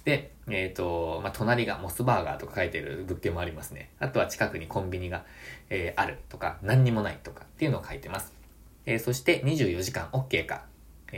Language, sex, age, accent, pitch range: Japanese, male, 20-39, native, 85-125 Hz